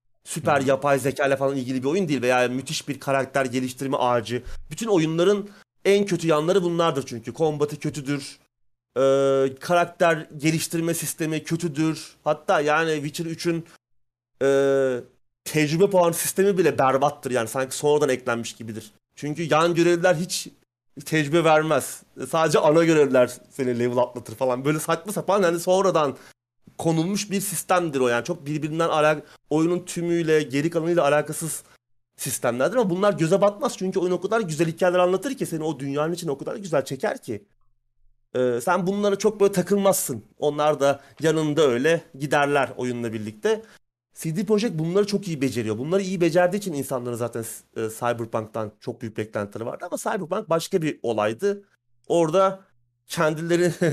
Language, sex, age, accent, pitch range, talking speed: Turkish, male, 30-49, native, 130-175 Hz, 150 wpm